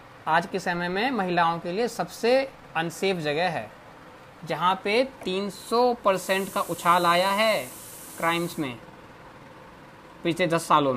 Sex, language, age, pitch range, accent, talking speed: male, Hindi, 20-39, 155-195 Hz, native, 130 wpm